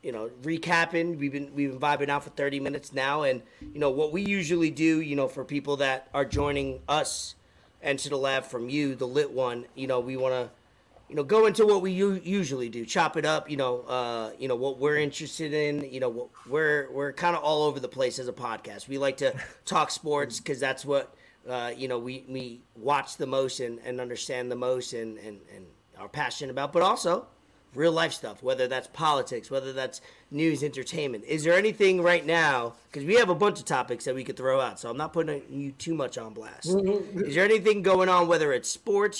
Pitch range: 130-170 Hz